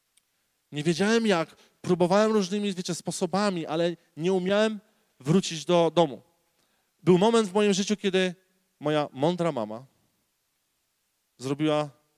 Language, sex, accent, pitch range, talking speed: Polish, male, native, 150-185 Hz, 115 wpm